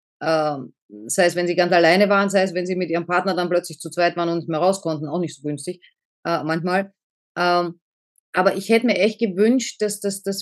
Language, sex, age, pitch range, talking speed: German, female, 30-49, 180-230 Hz, 260 wpm